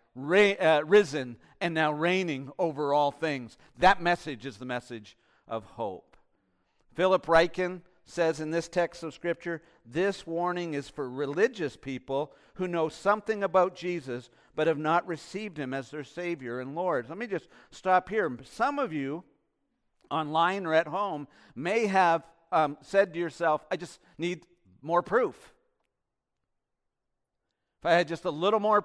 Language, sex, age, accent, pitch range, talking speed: English, male, 50-69, American, 140-180 Hz, 155 wpm